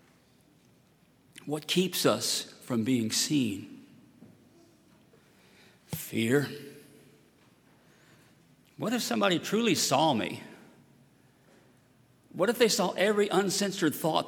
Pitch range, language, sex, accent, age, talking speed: 115-145 Hz, English, male, American, 50-69, 85 wpm